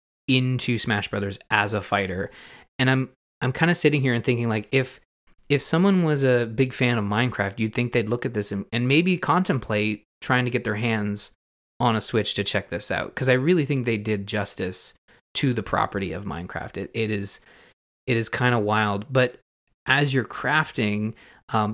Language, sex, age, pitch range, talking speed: English, male, 20-39, 100-130 Hz, 200 wpm